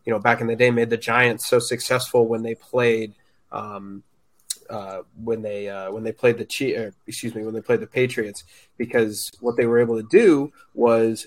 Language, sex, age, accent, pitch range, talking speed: English, male, 20-39, American, 115-125 Hz, 215 wpm